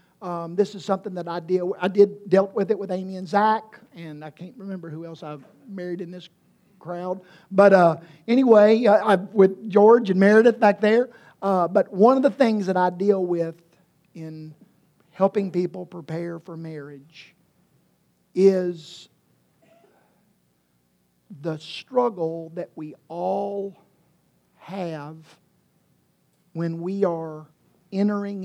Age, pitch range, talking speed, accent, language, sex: 50-69, 160-200 Hz, 140 wpm, American, English, male